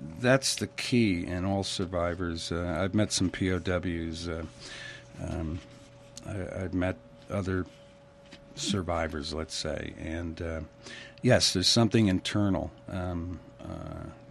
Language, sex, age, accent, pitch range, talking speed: English, male, 60-79, American, 90-120 Hz, 115 wpm